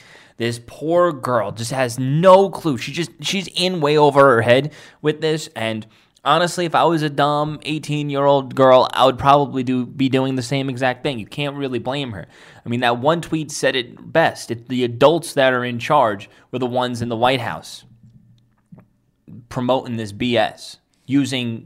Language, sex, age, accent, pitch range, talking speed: English, male, 20-39, American, 115-145 Hz, 185 wpm